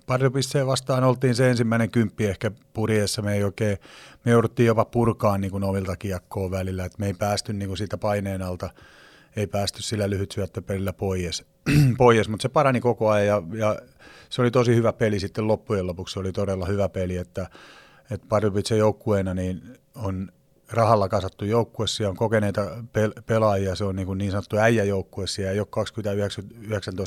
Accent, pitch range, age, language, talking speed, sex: native, 95-110 Hz, 30-49, Finnish, 170 wpm, male